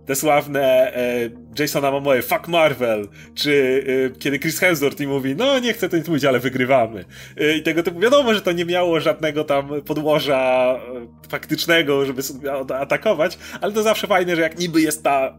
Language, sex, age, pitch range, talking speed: Polish, male, 30-49, 125-155 Hz, 170 wpm